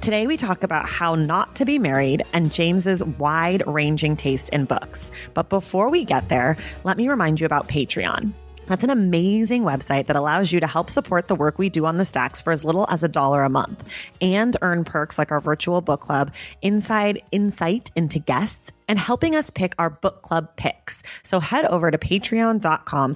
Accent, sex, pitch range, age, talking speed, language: American, female, 155-205 Hz, 30-49, 200 wpm, English